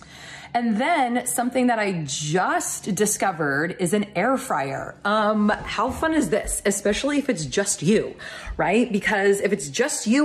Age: 30-49